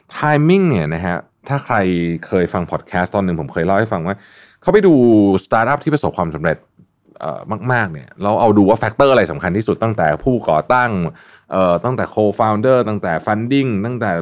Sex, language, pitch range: male, Thai, 90-120 Hz